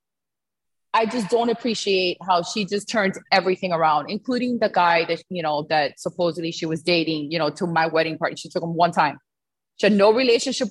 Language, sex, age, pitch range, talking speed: English, female, 30-49, 175-225 Hz, 200 wpm